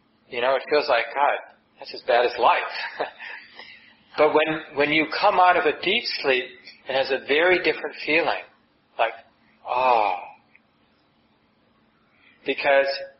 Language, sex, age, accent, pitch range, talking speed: English, male, 40-59, American, 130-160 Hz, 135 wpm